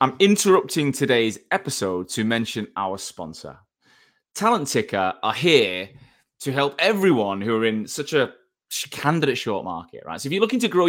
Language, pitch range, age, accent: English, 100-145 Hz, 20-39, British